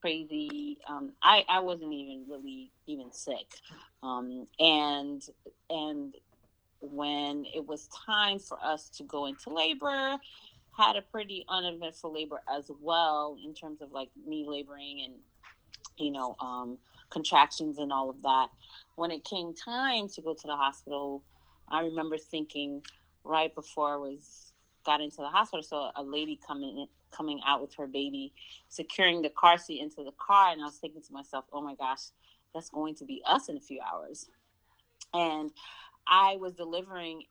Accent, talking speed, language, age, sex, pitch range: American, 165 wpm, English, 30-49, female, 145-175 Hz